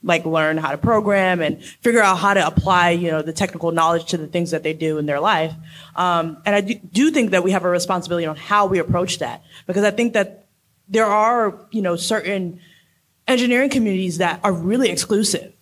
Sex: female